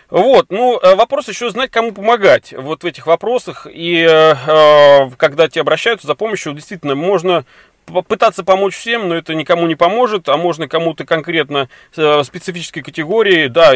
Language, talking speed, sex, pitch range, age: Russian, 155 wpm, male, 150-195 Hz, 30-49